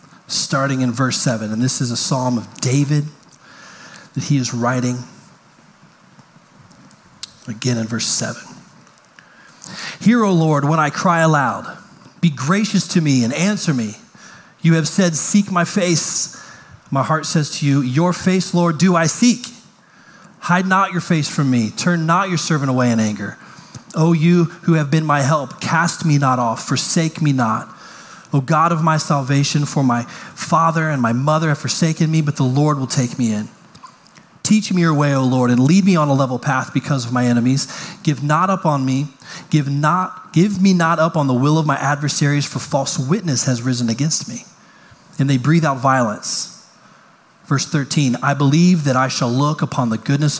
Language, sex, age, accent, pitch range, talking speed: English, male, 30-49, American, 130-170 Hz, 185 wpm